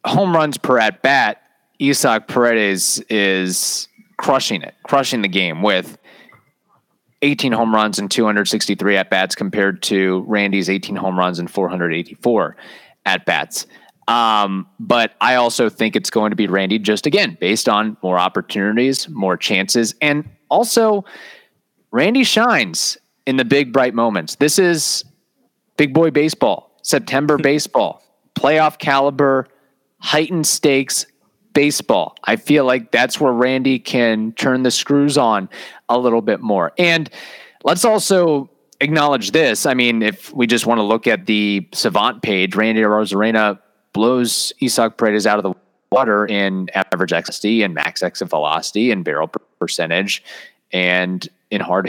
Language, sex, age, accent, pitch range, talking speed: English, male, 30-49, American, 105-145 Hz, 140 wpm